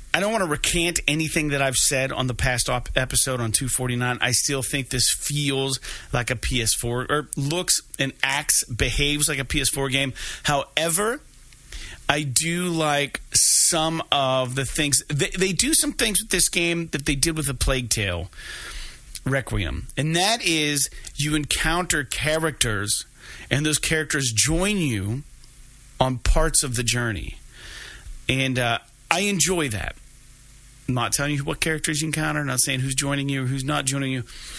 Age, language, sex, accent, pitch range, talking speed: 30-49, English, male, American, 115-150 Hz, 160 wpm